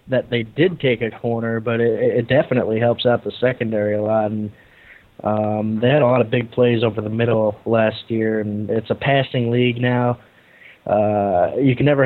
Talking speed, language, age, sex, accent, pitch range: 195 wpm, English, 20-39, male, American, 110-120 Hz